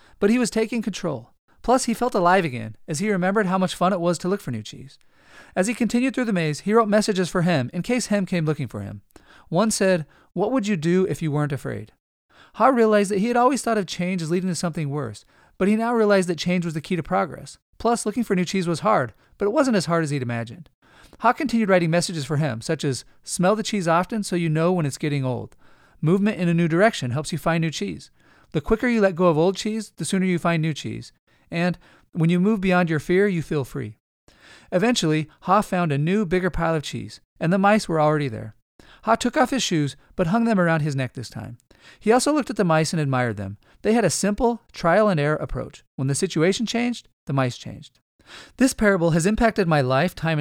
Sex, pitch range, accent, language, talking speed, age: male, 150-210 Hz, American, English, 240 wpm, 40-59